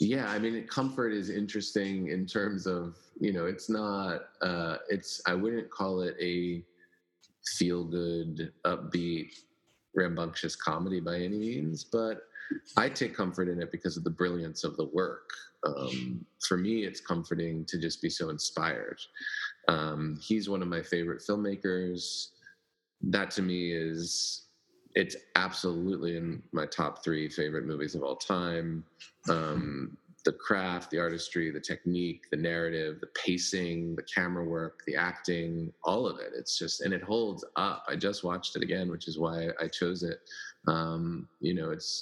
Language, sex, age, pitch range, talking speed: English, male, 30-49, 85-95 Hz, 160 wpm